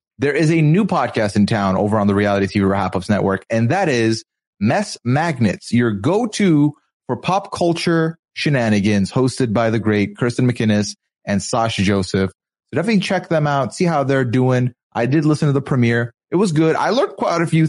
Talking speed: 195 wpm